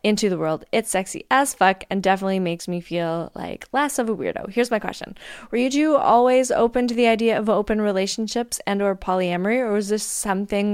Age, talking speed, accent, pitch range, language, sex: 20-39, 205 wpm, American, 185-230 Hz, English, female